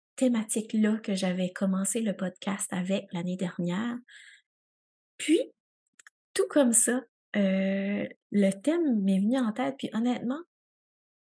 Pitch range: 200-265 Hz